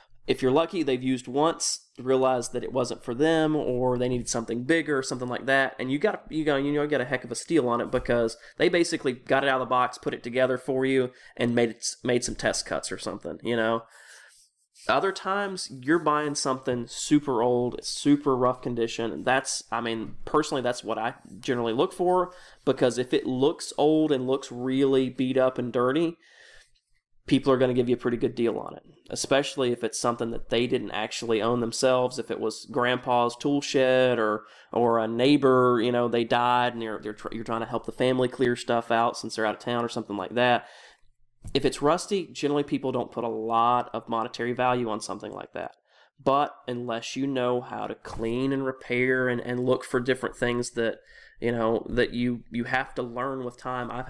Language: English